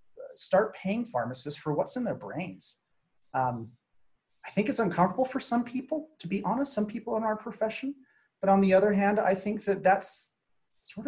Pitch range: 130-190 Hz